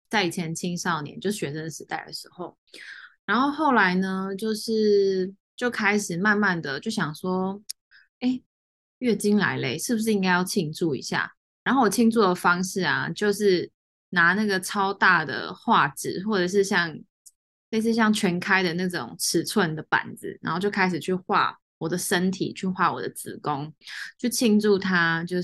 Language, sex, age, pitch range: Chinese, female, 20-39, 175-215 Hz